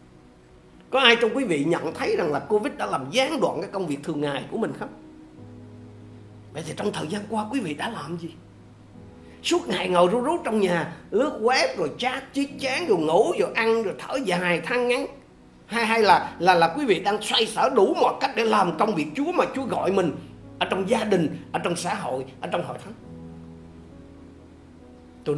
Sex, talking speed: male, 215 wpm